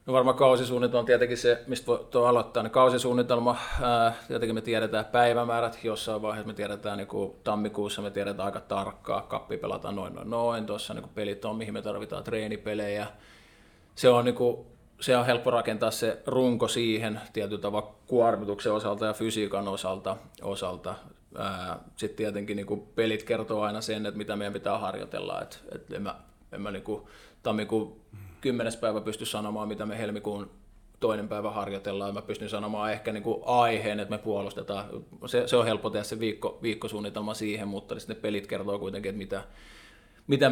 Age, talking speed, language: 20-39, 160 wpm, Finnish